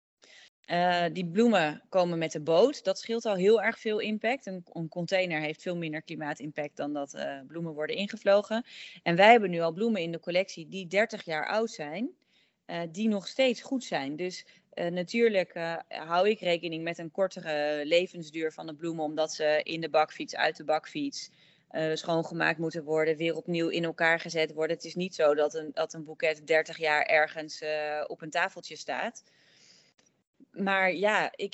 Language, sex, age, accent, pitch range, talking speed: Dutch, female, 30-49, Dutch, 160-195 Hz, 185 wpm